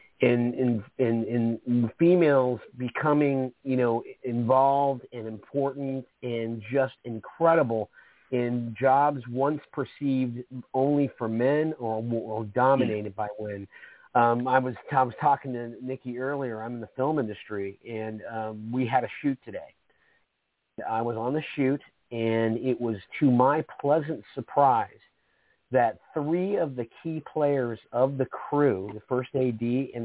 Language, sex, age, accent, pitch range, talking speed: English, male, 40-59, American, 120-160 Hz, 145 wpm